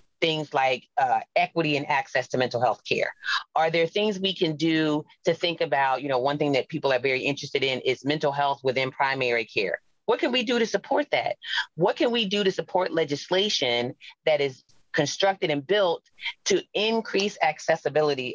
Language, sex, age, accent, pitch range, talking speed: English, female, 30-49, American, 130-170 Hz, 185 wpm